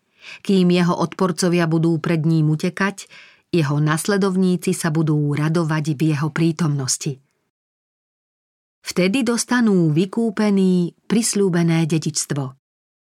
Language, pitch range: Slovak, 160-195 Hz